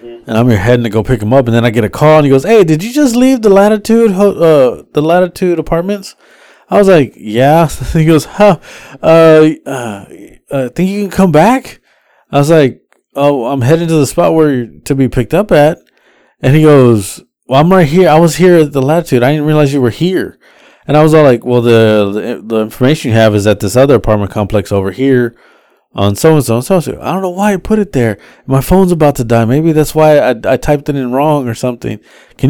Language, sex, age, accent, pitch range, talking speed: English, male, 20-39, American, 115-165 Hz, 235 wpm